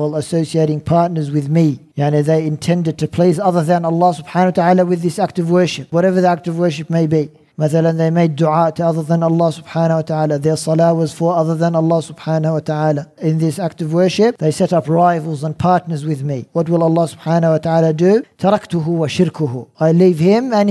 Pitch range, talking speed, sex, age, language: 155-180 Hz, 220 wpm, male, 50-69, English